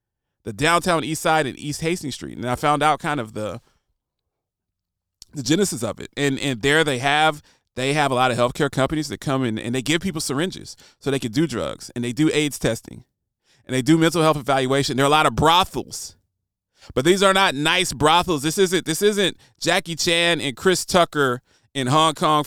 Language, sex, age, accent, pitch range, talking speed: English, male, 30-49, American, 115-165 Hz, 210 wpm